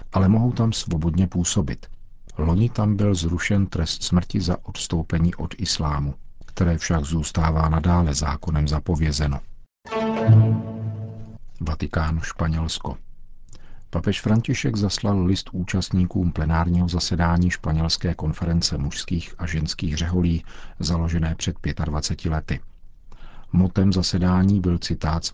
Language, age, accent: Czech, 50-69, native